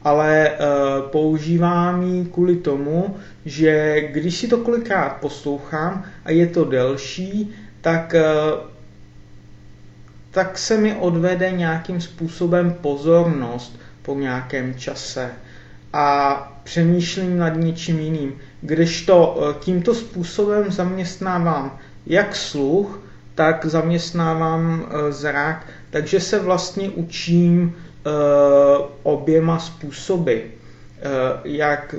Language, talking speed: Czech, 100 wpm